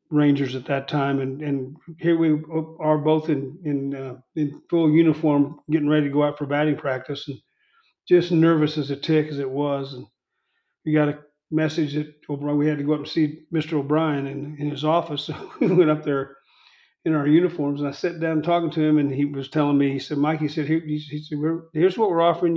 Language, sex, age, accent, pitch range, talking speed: English, male, 40-59, American, 145-165 Hz, 225 wpm